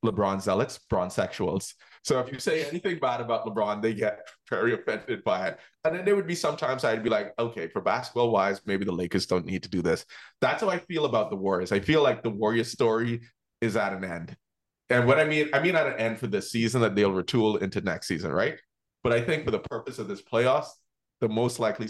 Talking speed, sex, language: 235 wpm, male, English